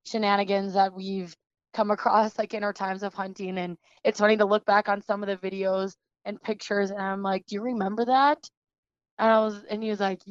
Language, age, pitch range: English, 20-39, 200-220 Hz